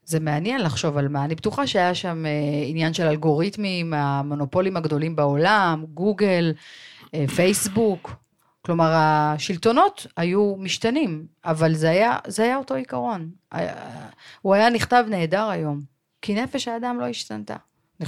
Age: 40-59